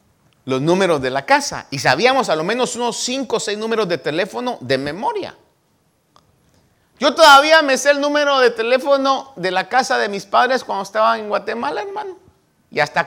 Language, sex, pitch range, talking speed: Spanish, male, 175-260 Hz, 185 wpm